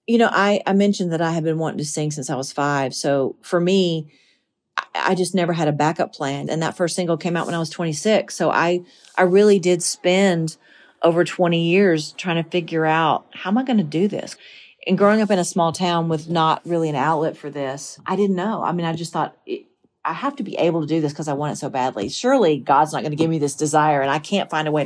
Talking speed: 260 wpm